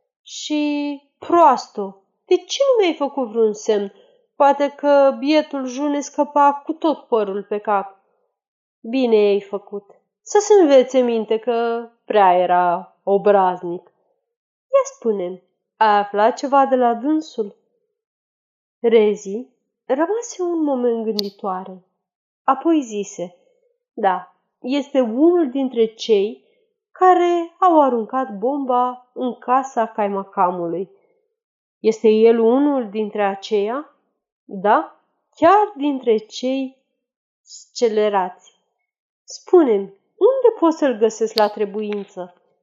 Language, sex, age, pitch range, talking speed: Romanian, female, 30-49, 205-295 Hz, 105 wpm